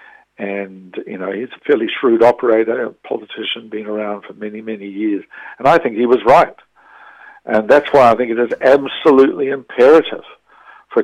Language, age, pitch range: English, 60-79, 115-140 Hz